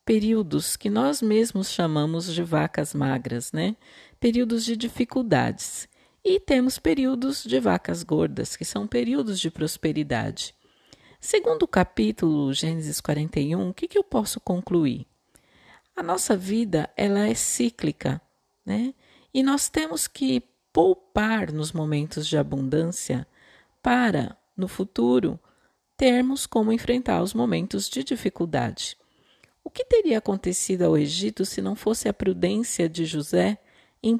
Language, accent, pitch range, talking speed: Portuguese, Brazilian, 160-245 Hz, 125 wpm